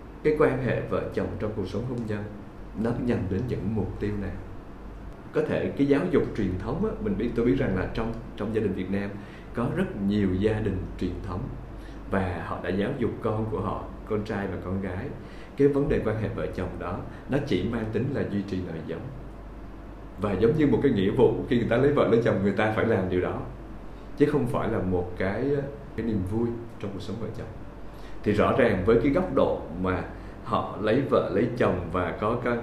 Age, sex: 20-39, male